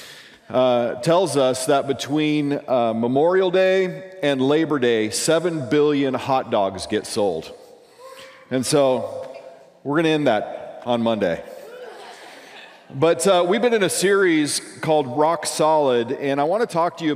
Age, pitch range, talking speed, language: 40-59, 130-170 Hz, 145 wpm, English